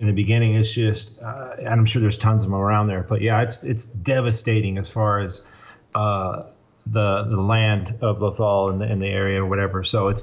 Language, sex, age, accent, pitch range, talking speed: English, male, 30-49, American, 105-125 Hz, 225 wpm